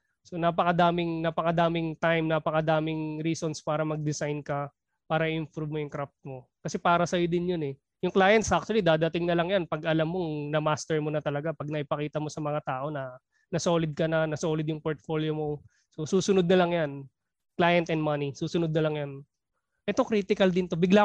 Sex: male